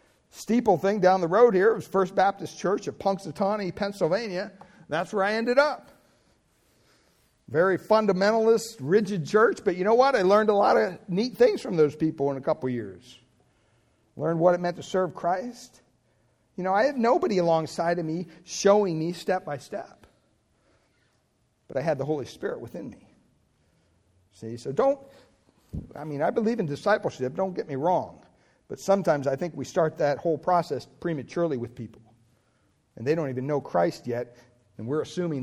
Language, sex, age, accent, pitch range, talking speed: English, male, 60-79, American, 130-195 Hz, 175 wpm